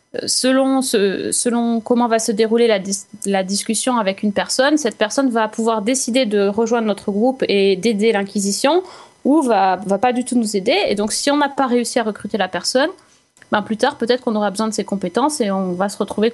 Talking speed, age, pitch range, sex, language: 220 wpm, 30-49, 200-250 Hz, female, French